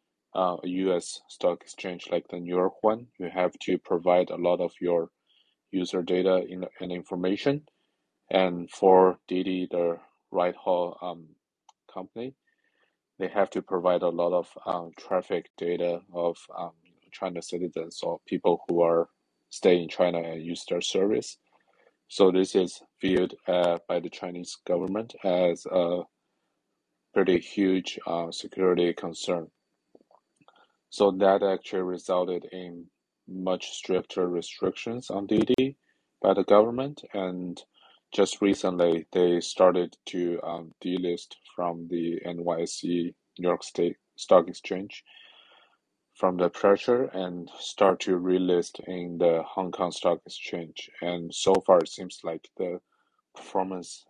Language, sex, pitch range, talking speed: English, male, 85-95 Hz, 135 wpm